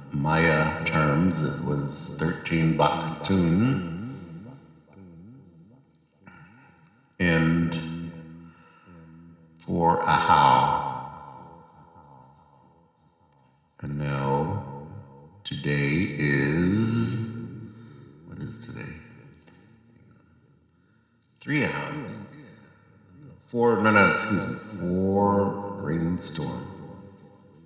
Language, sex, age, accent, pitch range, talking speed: English, male, 50-69, American, 75-95 Hz, 55 wpm